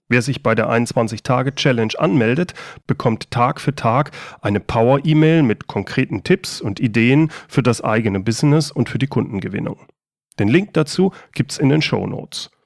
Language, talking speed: German, 155 wpm